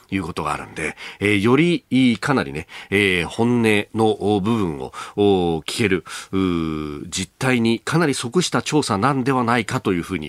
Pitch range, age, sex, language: 95-135 Hz, 40-59, male, Japanese